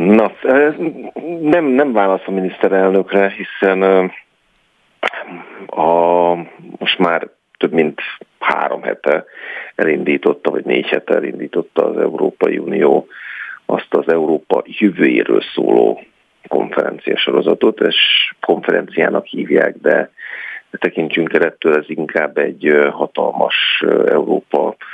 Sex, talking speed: male, 100 wpm